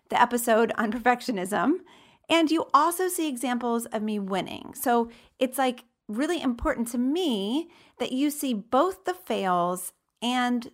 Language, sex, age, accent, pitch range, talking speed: English, female, 30-49, American, 220-295 Hz, 145 wpm